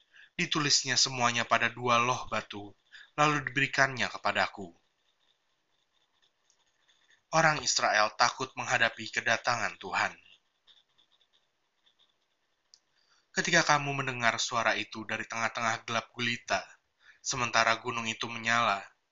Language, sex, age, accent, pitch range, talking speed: Indonesian, male, 20-39, native, 110-135 Hz, 90 wpm